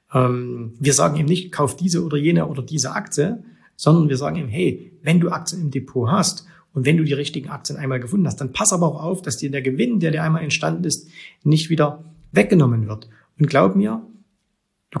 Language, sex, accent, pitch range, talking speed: German, male, German, 130-170 Hz, 210 wpm